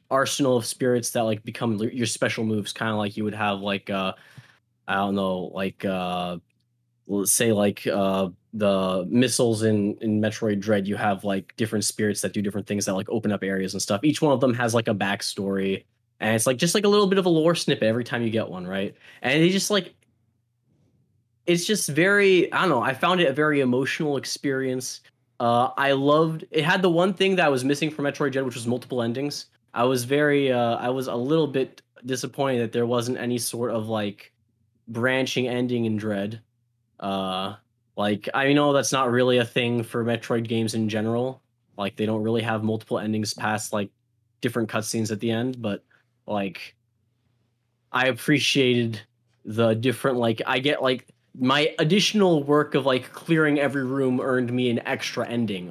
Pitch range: 105-135 Hz